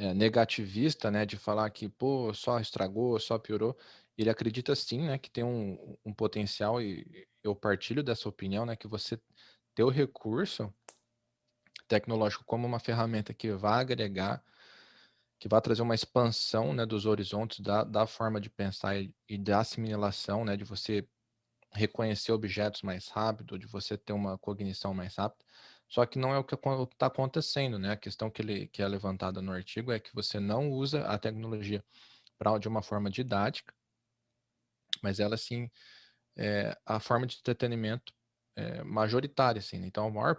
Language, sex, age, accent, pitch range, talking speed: Portuguese, male, 20-39, Brazilian, 105-120 Hz, 170 wpm